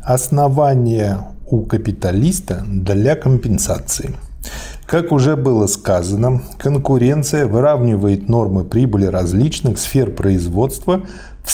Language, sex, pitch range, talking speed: Russian, male, 105-135 Hz, 90 wpm